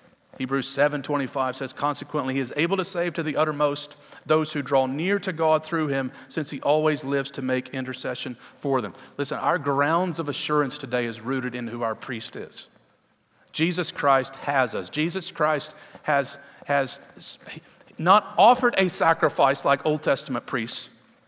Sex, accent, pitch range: male, American, 145-210 Hz